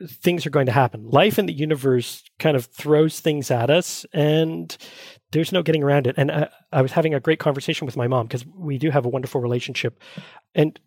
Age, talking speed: 30-49, 220 wpm